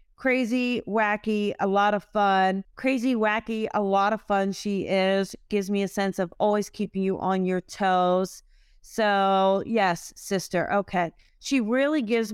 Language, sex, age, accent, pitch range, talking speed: English, female, 40-59, American, 195-235 Hz, 155 wpm